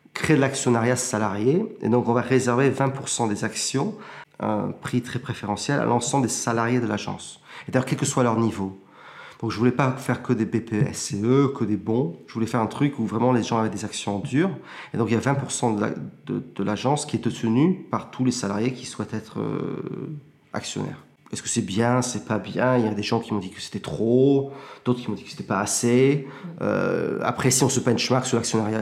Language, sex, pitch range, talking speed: French, male, 110-130 Hz, 230 wpm